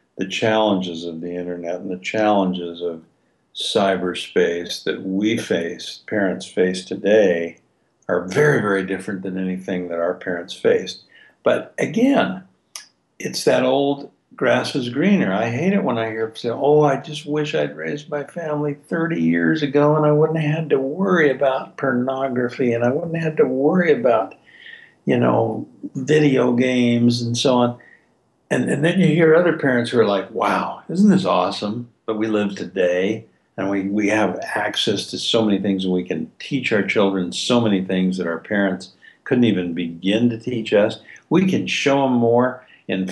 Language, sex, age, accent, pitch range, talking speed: English, male, 60-79, American, 95-135 Hz, 180 wpm